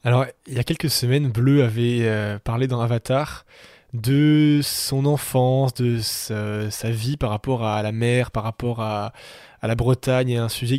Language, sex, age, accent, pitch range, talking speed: French, male, 20-39, French, 115-130 Hz, 185 wpm